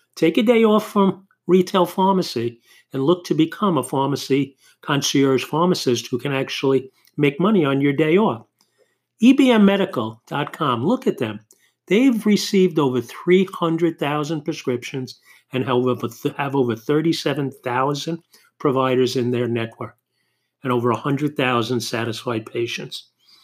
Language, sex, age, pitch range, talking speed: English, male, 50-69, 125-165 Hz, 120 wpm